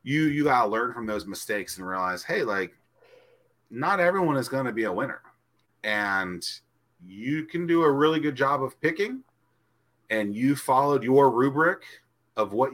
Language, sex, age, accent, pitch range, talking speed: English, male, 30-49, American, 130-200 Hz, 165 wpm